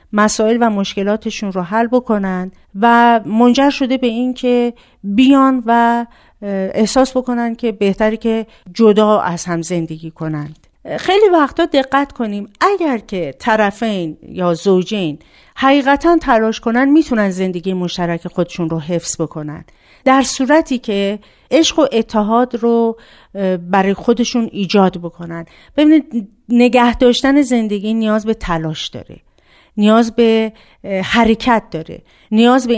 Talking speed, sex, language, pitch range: 125 wpm, female, Persian, 190-245 Hz